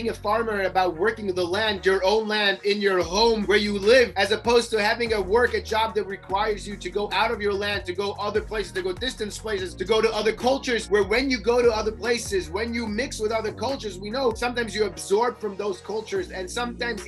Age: 30-49